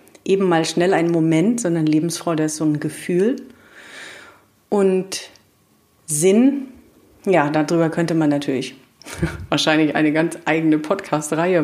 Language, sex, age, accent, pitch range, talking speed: German, female, 40-59, German, 165-205 Hz, 120 wpm